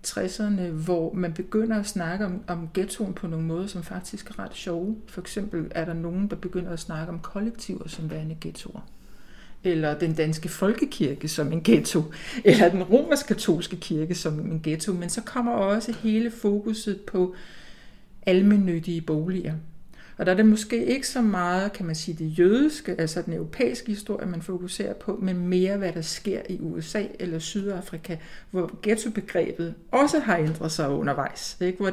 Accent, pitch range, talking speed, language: native, 170-205 Hz, 175 wpm, Danish